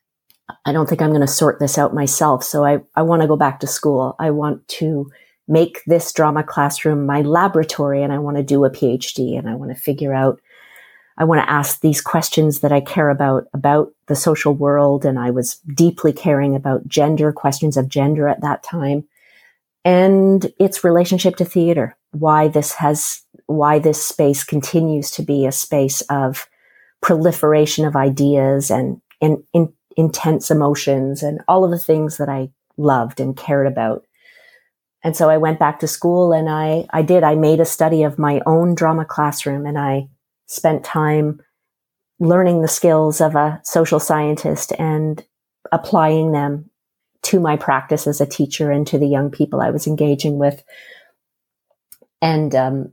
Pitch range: 140-160 Hz